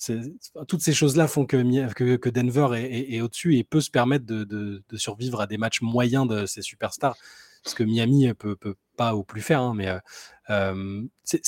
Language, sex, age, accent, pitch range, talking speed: French, male, 20-39, French, 110-140 Hz, 220 wpm